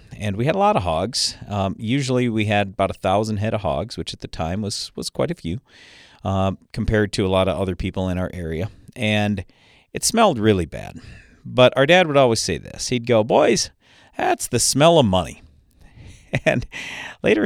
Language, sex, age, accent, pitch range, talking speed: English, male, 40-59, American, 95-125 Hz, 205 wpm